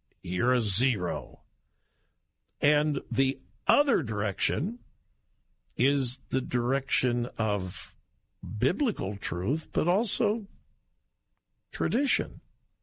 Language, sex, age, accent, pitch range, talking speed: English, male, 50-69, American, 120-170 Hz, 75 wpm